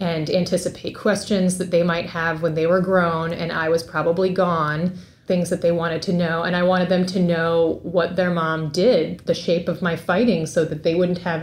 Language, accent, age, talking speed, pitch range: English, American, 30-49, 220 wpm, 165-190 Hz